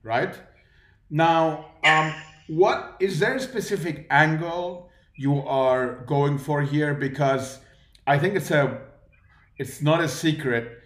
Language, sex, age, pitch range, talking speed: English, male, 40-59, 125-150 Hz, 120 wpm